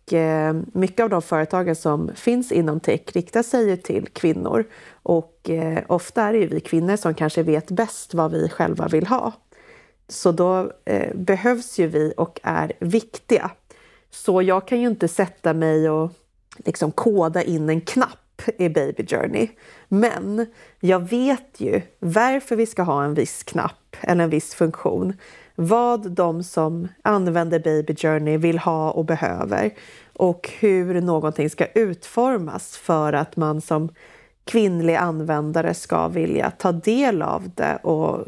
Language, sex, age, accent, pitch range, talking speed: Swedish, female, 30-49, native, 165-220 Hz, 150 wpm